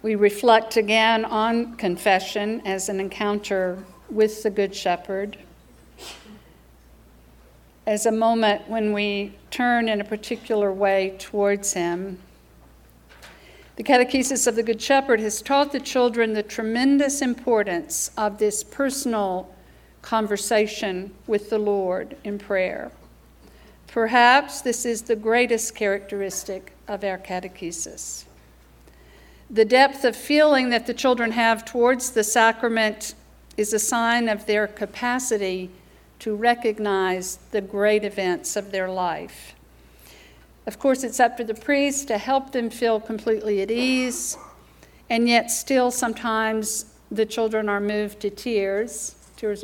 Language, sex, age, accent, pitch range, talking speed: English, female, 60-79, American, 195-235 Hz, 125 wpm